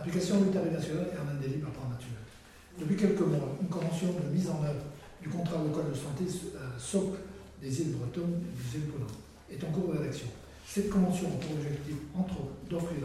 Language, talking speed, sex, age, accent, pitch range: French, 195 wpm, male, 60-79, French, 135-180 Hz